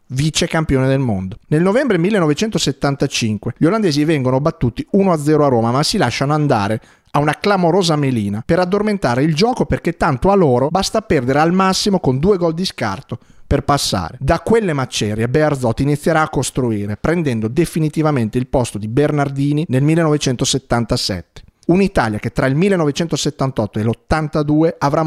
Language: Italian